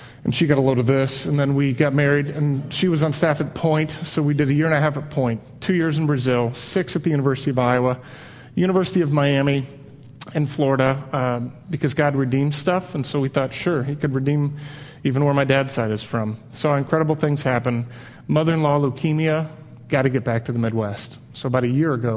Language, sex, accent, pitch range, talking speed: English, male, American, 130-155 Hz, 220 wpm